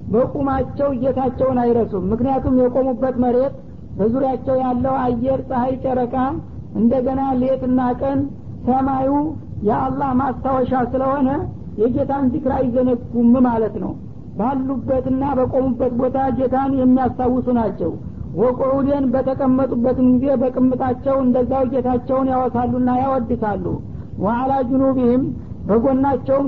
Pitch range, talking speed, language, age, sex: 250-270 Hz, 90 wpm, Amharic, 60-79, female